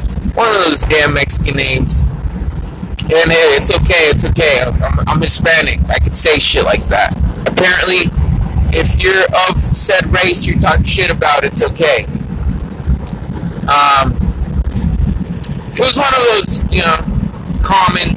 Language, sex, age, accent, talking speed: English, male, 30-49, American, 140 wpm